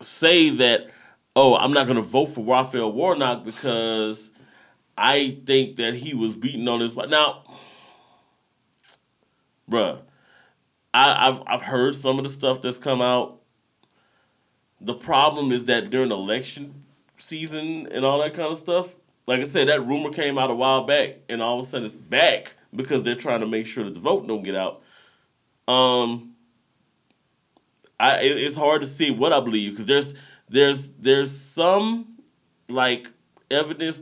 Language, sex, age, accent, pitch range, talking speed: English, male, 30-49, American, 120-160 Hz, 160 wpm